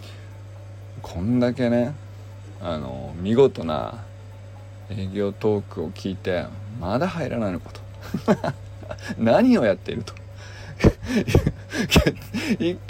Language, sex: Japanese, male